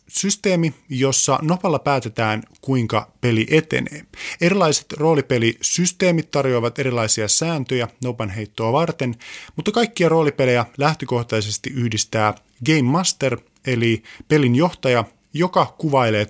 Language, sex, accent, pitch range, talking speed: Finnish, male, native, 115-150 Hz, 100 wpm